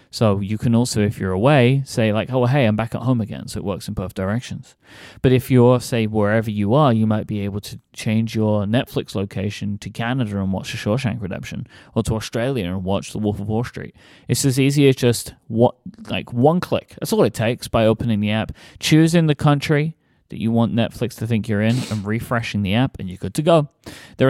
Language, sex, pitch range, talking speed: English, male, 110-135 Hz, 230 wpm